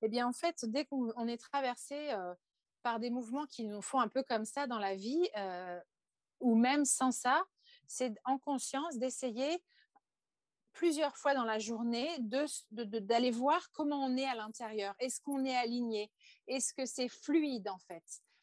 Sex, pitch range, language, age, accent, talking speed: female, 225-285 Hz, French, 40-59, French, 175 wpm